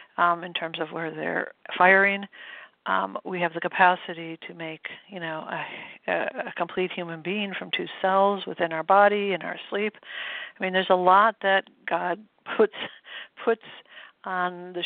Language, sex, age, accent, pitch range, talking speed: English, female, 60-79, American, 170-205 Hz, 165 wpm